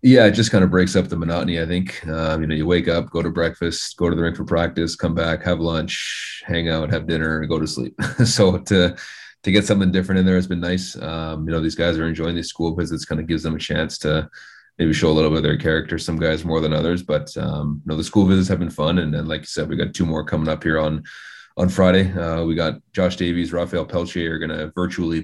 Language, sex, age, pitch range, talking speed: English, male, 30-49, 80-90 Hz, 275 wpm